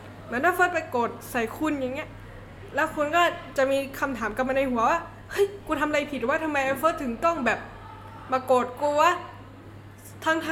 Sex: female